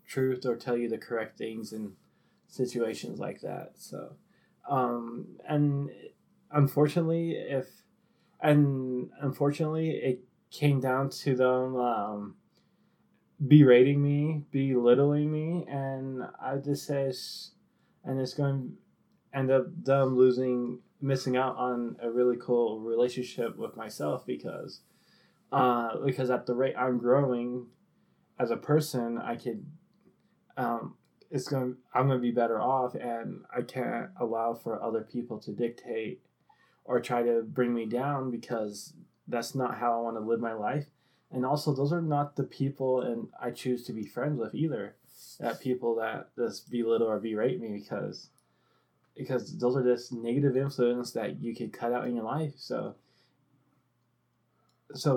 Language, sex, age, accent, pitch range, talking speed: English, male, 20-39, American, 120-140 Hz, 150 wpm